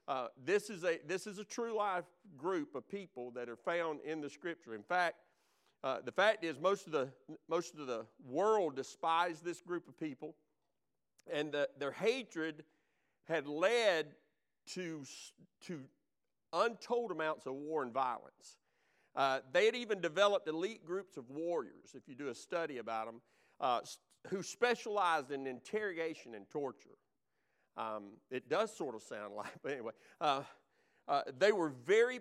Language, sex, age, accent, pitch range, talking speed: English, male, 50-69, American, 140-195 Hz, 160 wpm